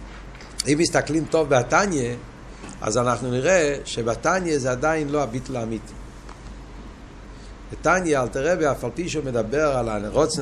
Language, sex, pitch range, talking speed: Hebrew, male, 120-160 Hz, 125 wpm